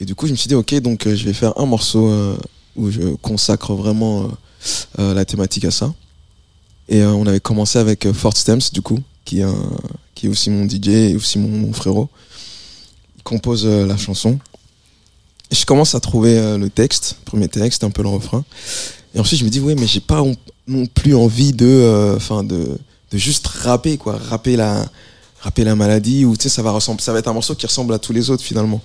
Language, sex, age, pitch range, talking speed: French, male, 20-39, 100-120 Hz, 235 wpm